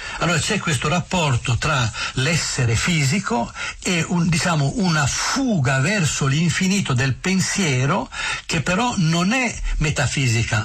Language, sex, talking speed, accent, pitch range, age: Italian, male, 105 wpm, native, 125-170 Hz, 60-79